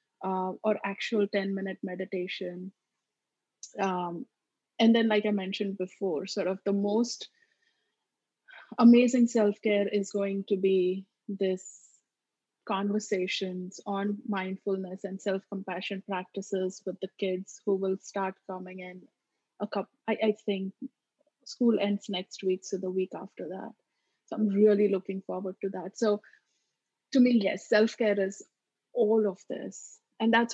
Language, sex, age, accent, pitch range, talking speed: English, female, 30-49, Indian, 195-225 Hz, 135 wpm